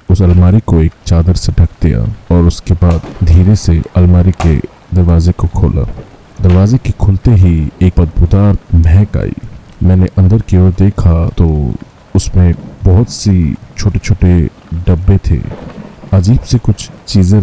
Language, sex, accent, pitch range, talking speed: Hindi, male, native, 90-105 Hz, 150 wpm